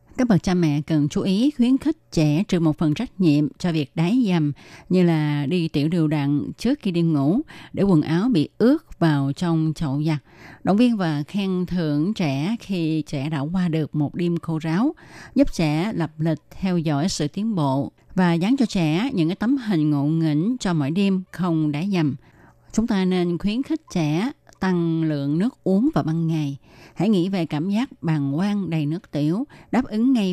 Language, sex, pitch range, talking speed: Vietnamese, female, 150-195 Hz, 205 wpm